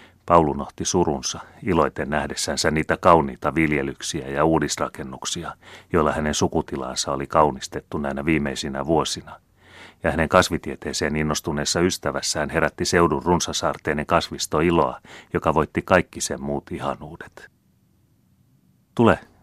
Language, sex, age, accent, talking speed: Finnish, male, 40-59, native, 105 wpm